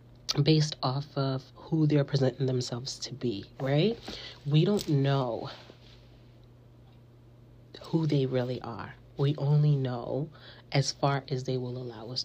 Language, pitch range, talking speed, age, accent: English, 120-150 Hz, 130 wpm, 40-59, American